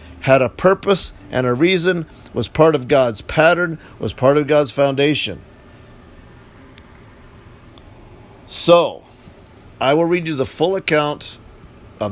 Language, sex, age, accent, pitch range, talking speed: English, male, 50-69, American, 125-160 Hz, 125 wpm